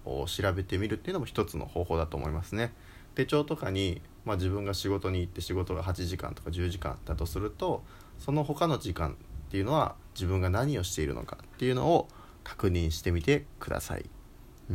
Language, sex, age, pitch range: Japanese, male, 20-39, 90-120 Hz